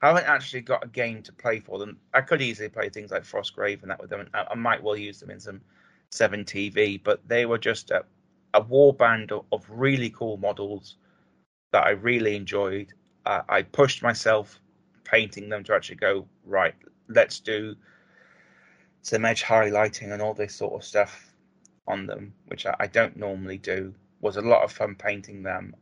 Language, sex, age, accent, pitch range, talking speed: English, male, 30-49, British, 100-115 Hz, 200 wpm